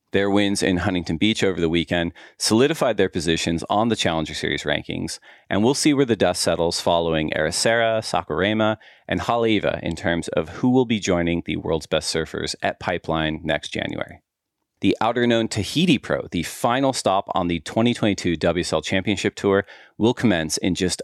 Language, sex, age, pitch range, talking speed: English, male, 40-59, 85-105 Hz, 175 wpm